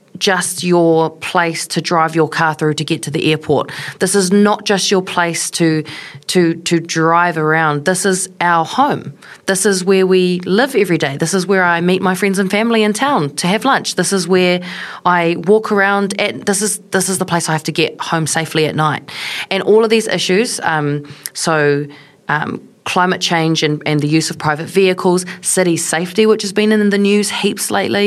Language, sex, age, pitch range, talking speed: English, female, 30-49, 160-195 Hz, 205 wpm